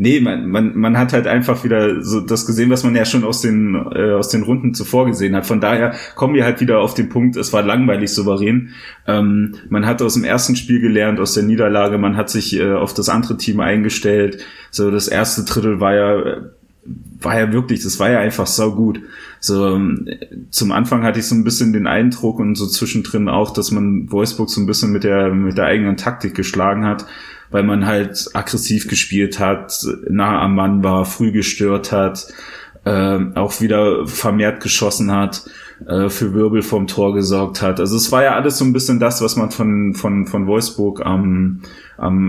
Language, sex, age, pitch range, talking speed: German, male, 30-49, 100-115 Hz, 205 wpm